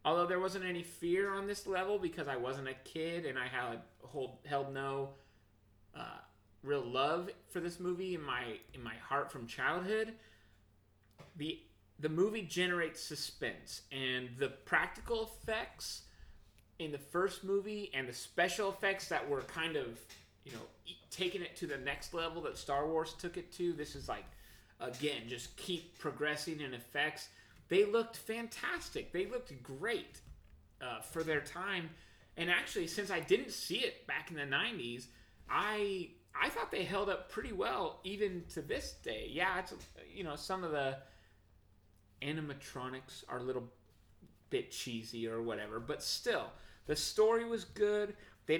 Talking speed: 160 wpm